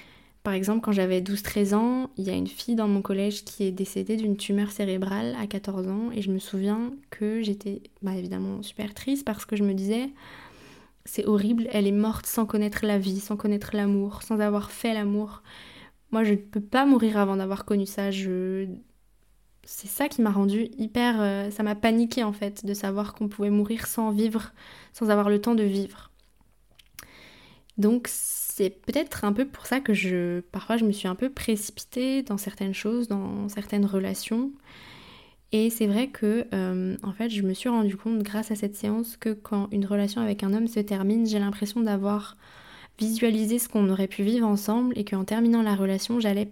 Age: 20-39